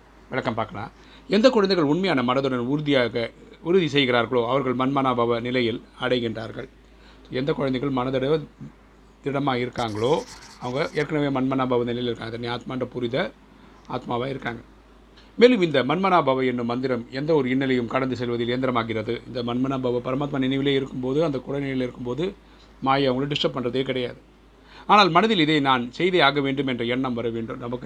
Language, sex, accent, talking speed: Tamil, male, native, 135 wpm